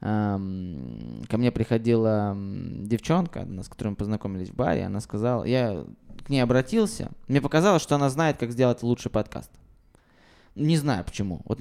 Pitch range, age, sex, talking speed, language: 110-140 Hz, 20-39, male, 155 wpm, Russian